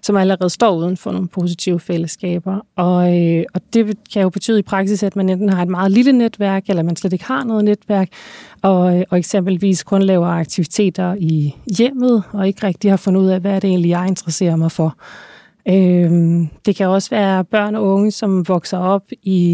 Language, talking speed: Danish, 205 wpm